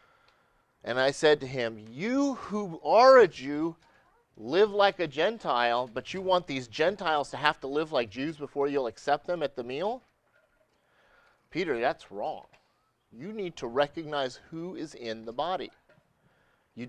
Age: 30-49